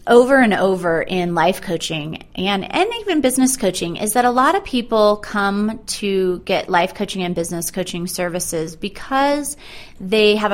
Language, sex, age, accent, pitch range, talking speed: English, female, 30-49, American, 180-225 Hz, 165 wpm